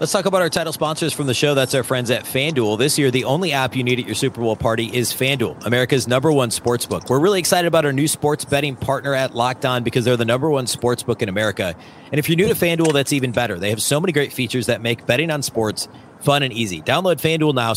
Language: English